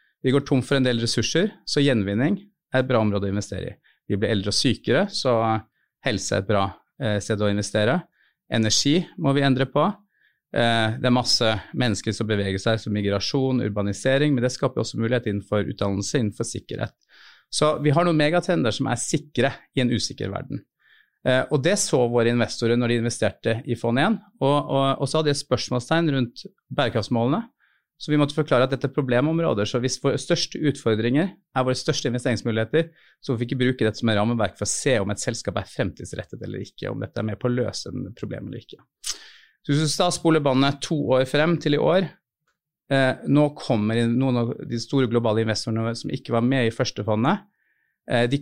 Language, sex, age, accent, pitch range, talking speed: English, male, 30-49, Norwegian, 110-145 Hz, 200 wpm